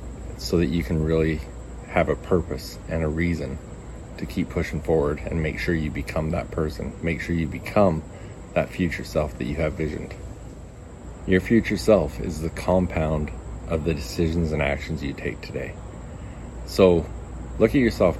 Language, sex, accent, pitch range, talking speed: English, male, American, 75-90 Hz, 170 wpm